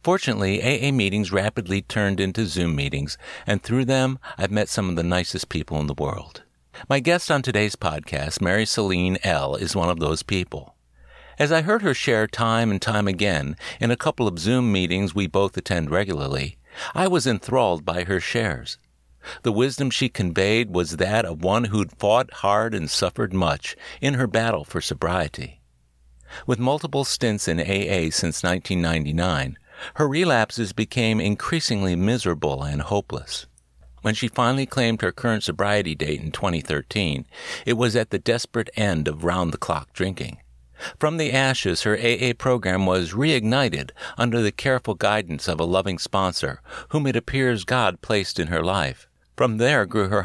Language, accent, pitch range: English, American, 85-120 Hz